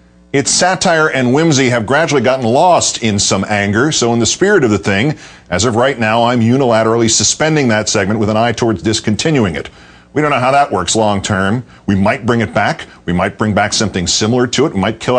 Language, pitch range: English, 105-135 Hz